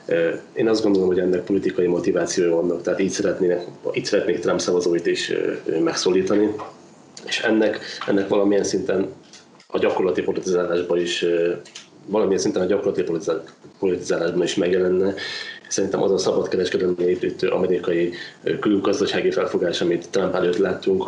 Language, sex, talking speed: Hungarian, male, 130 wpm